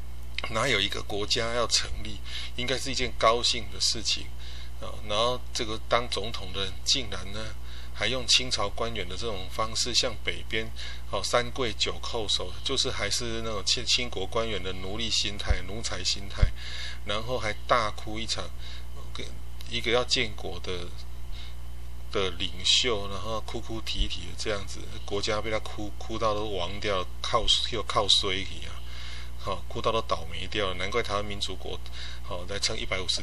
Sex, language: male, Chinese